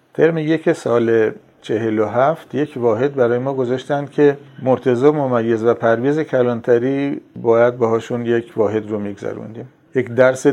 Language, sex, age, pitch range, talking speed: Persian, male, 50-69, 110-135 Hz, 130 wpm